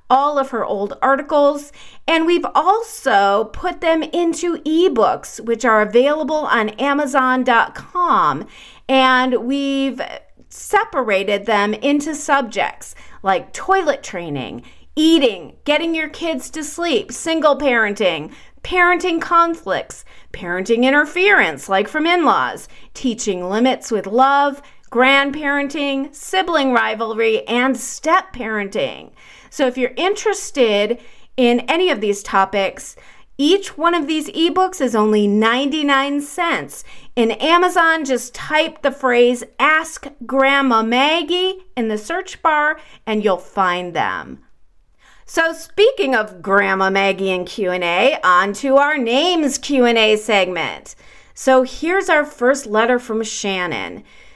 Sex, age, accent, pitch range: female, 40-59, American, 225-320 Hz